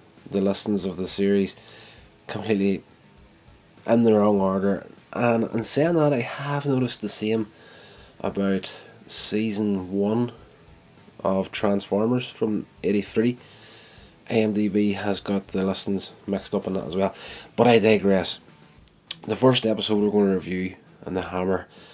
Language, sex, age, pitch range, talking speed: English, male, 20-39, 95-110 Hz, 135 wpm